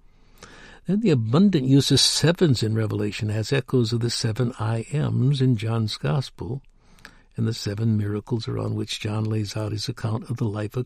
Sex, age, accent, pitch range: male, 60-79, American, 110-145 Hz